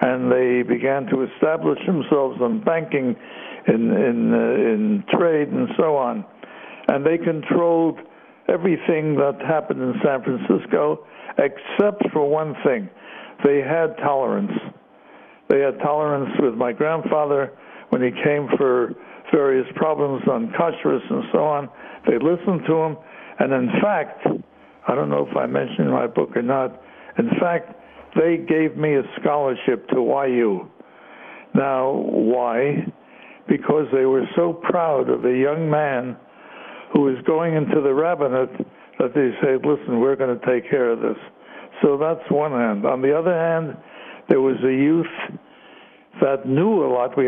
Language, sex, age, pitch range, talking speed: English, male, 60-79, 130-165 Hz, 155 wpm